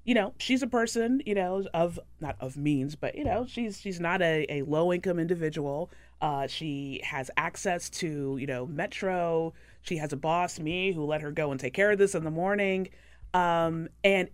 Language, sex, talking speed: English, female, 200 wpm